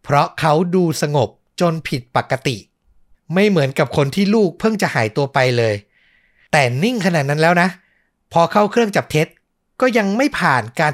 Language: Thai